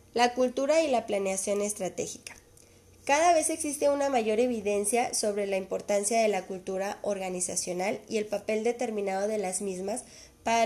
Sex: female